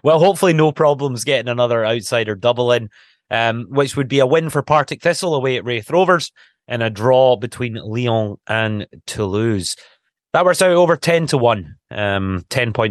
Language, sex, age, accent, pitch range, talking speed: English, male, 30-49, British, 105-145 Hz, 170 wpm